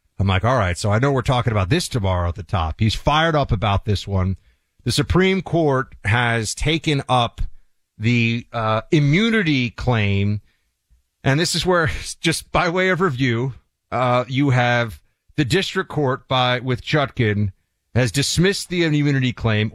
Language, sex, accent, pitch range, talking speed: English, male, American, 120-180 Hz, 165 wpm